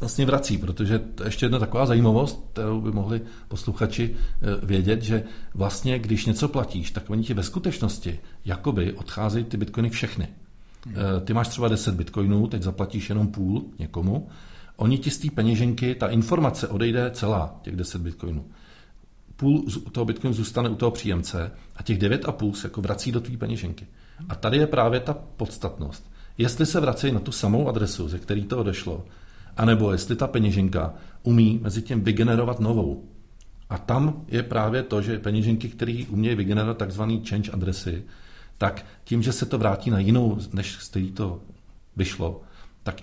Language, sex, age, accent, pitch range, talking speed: Czech, male, 40-59, native, 95-115 Hz, 165 wpm